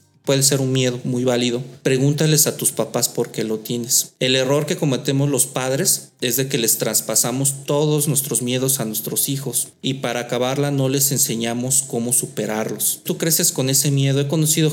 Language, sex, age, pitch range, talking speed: Spanish, male, 40-59, 120-140 Hz, 185 wpm